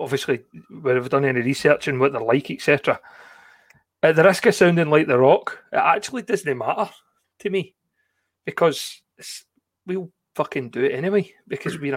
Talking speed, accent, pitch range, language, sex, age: 165 wpm, British, 150-200 Hz, English, male, 30-49